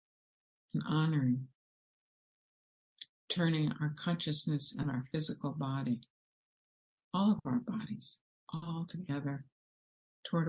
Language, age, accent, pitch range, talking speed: English, 60-79, American, 130-155 Hz, 85 wpm